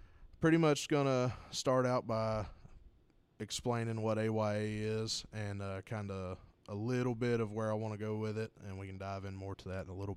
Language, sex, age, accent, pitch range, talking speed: English, male, 20-39, American, 100-115 Hz, 205 wpm